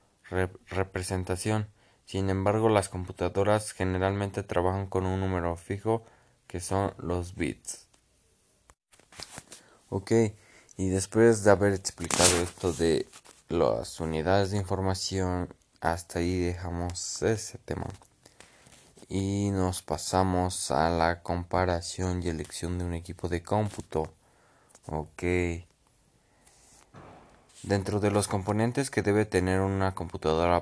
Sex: male